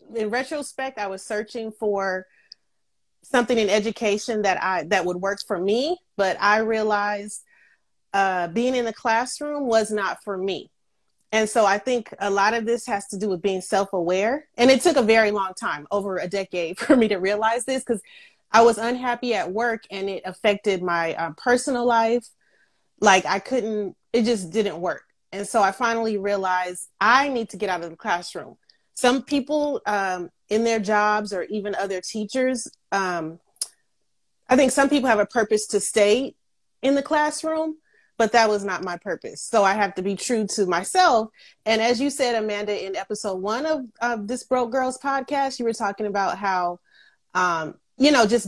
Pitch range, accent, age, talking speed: 195-235 Hz, American, 30-49, 185 wpm